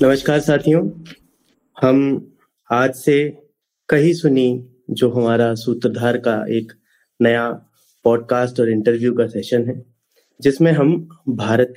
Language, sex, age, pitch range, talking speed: Hindi, male, 30-49, 125-160 Hz, 110 wpm